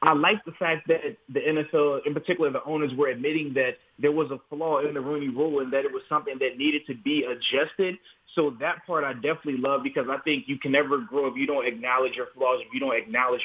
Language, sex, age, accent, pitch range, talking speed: English, male, 20-39, American, 140-165 Hz, 245 wpm